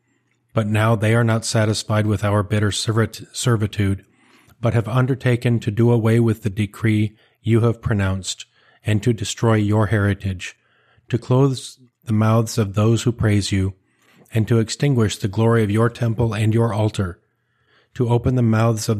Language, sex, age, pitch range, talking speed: English, male, 40-59, 105-120 Hz, 165 wpm